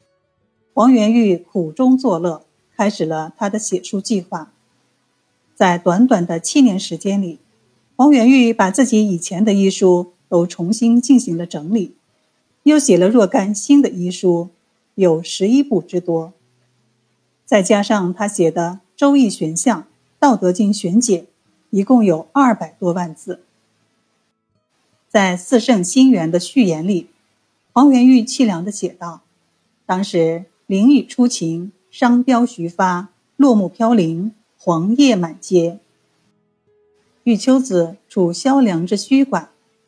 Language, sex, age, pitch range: Chinese, female, 50-69, 175-240 Hz